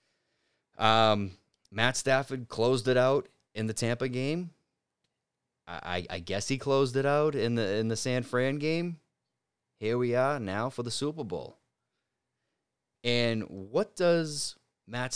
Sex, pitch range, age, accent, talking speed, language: male, 95-130 Hz, 30-49, American, 145 wpm, English